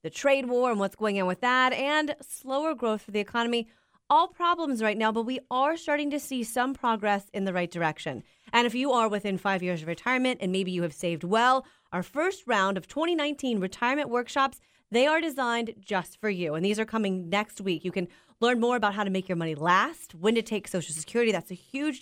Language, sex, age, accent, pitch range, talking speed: English, female, 30-49, American, 190-255 Hz, 230 wpm